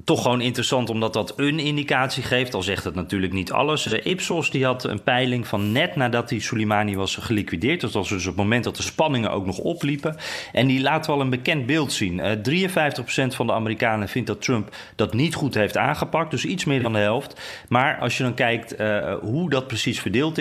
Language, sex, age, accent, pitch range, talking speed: Dutch, male, 30-49, Dutch, 105-135 Hz, 220 wpm